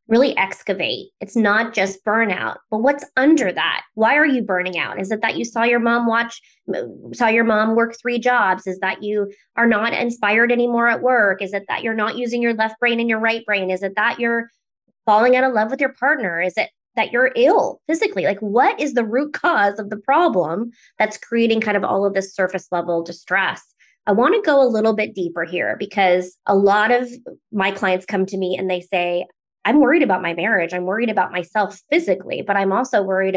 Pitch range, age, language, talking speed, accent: 190-240 Hz, 20-39, English, 220 wpm, American